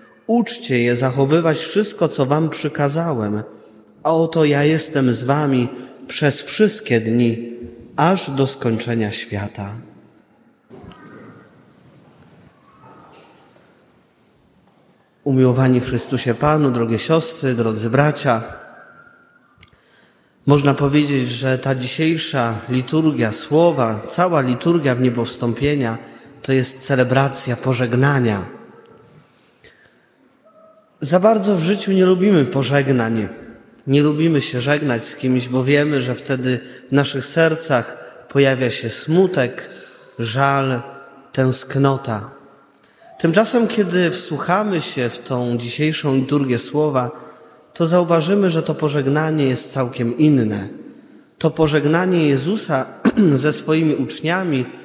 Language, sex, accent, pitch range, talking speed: Polish, male, native, 125-155 Hz, 100 wpm